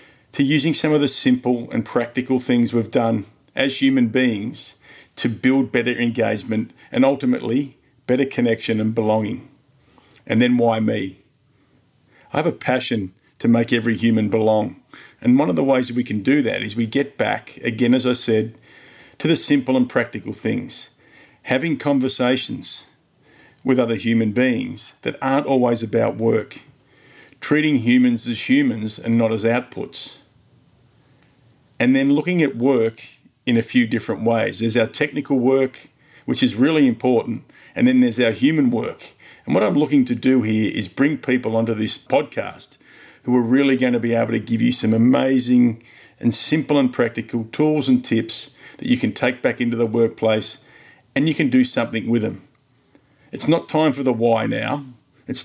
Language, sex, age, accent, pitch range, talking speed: English, male, 50-69, Australian, 115-140 Hz, 170 wpm